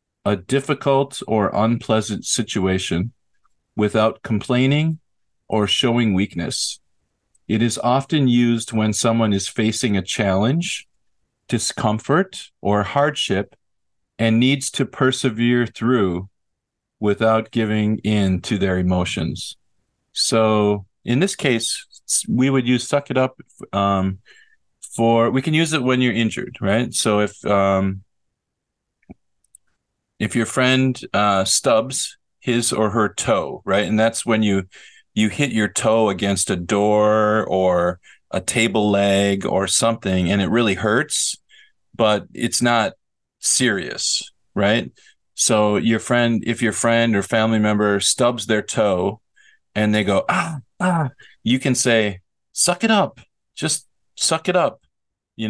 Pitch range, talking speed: 100-125 Hz, 130 wpm